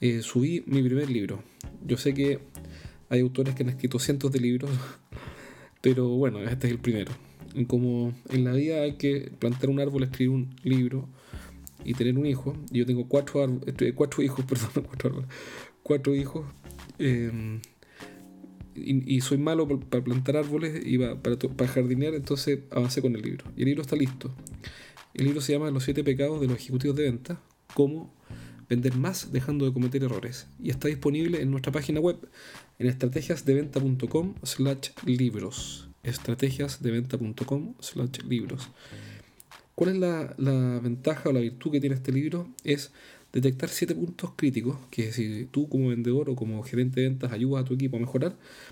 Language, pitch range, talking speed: Spanish, 125-140 Hz, 170 wpm